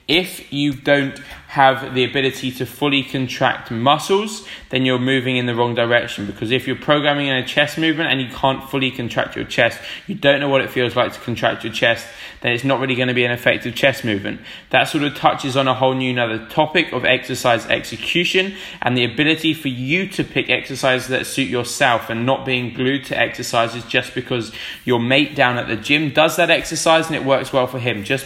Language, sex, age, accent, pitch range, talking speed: English, male, 20-39, British, 125-145 Hz, 215 wpm